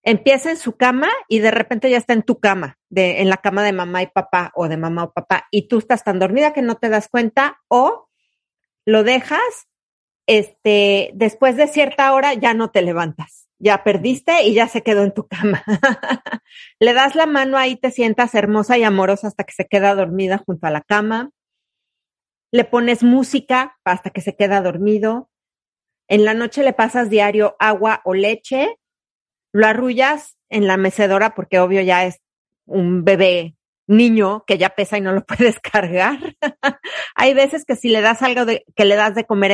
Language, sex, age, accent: Spanish, female, 40-59, Mexican